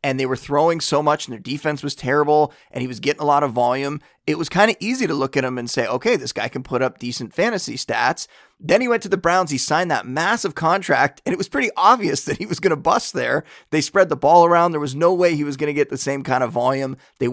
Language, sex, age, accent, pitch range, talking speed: English, male, 30-49, American, 135-170 Hz, 285 wpm